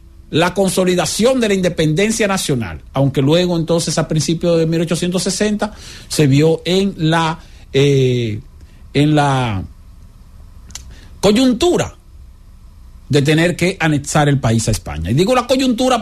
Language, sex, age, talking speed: English, male, 50-69, 125 wpm